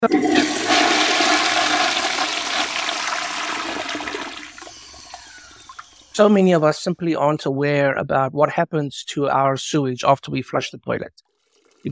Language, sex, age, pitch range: English, male, 60-79, 145-225 Hz